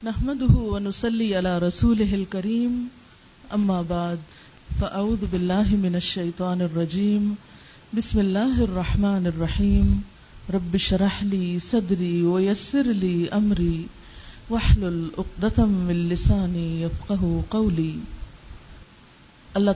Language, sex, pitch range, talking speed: Urdu, female, 175-220 Hz, 90 wpm